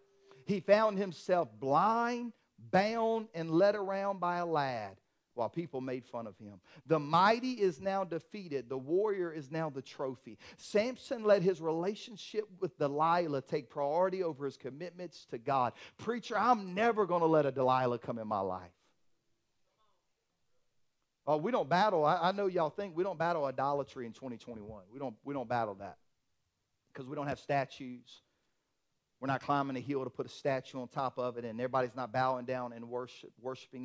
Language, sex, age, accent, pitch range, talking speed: English, male, 40-59, American, 130-205 Hz, 175 wpm